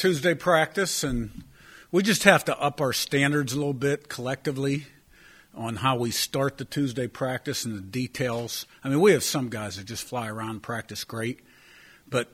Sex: male